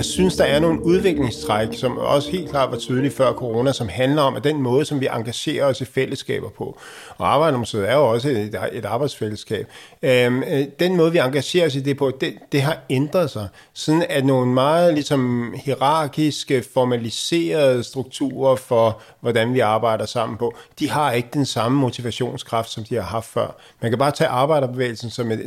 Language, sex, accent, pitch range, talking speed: Danish, male, native, 115-140 Hz, 190 wpm